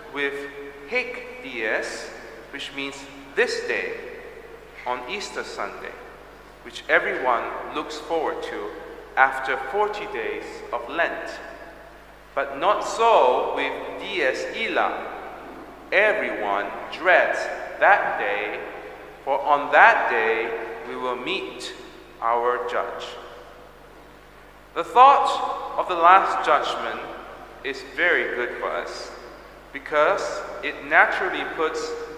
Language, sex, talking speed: English, male, 100 wpm